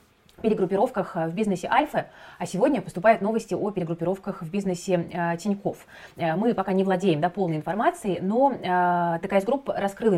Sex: female